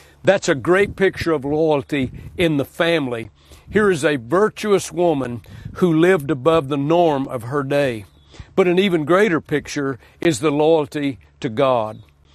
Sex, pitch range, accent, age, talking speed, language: male, 130-175 Hz, American, 60-79, 155 wpm, English